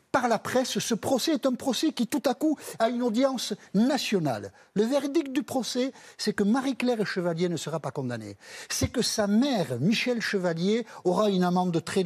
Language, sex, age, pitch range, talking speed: French, male, 60-79, 150-215 Hz, 190 wpm